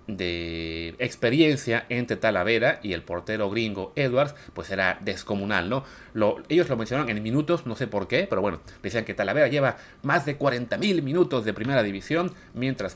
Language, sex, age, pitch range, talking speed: Spanish, male, 30-49, 100-145 Hz, 170 wpm